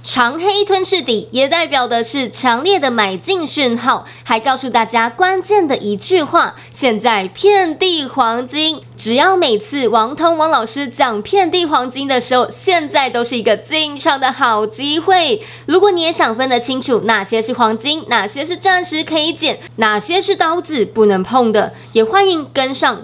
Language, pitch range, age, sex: Chinese, 230-320 Hz, 20-39, female